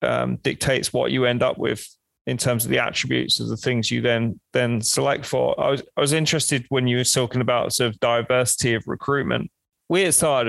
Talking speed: 215 wpm